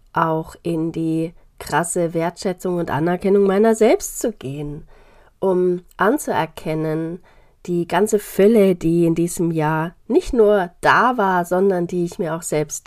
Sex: female